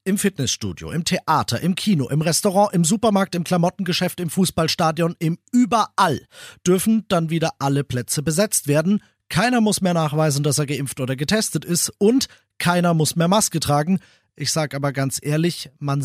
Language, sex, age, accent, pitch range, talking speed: German, male, 40-59, German, 135-180 Hz, 170 wpm